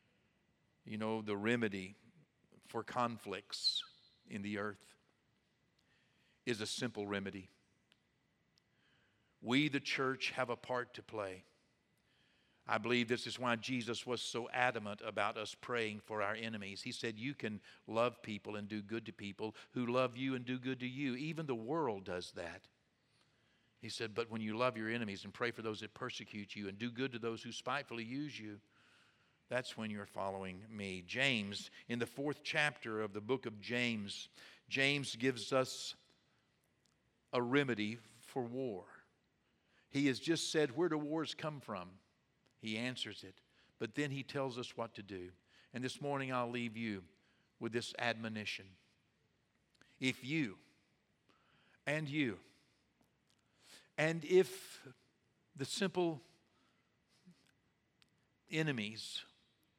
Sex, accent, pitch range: male, American, 105-130 Hz